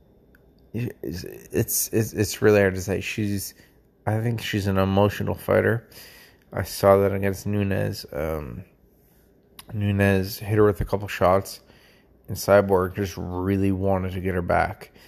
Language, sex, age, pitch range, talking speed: English, male, 30-49, 95-105 Hz, 145 wpm